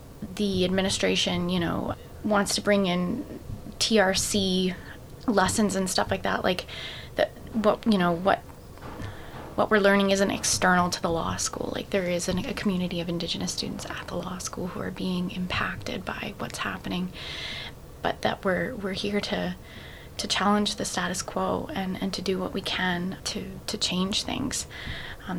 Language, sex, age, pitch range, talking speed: English, female, 20-39, 175-200 Hz, 170 wpm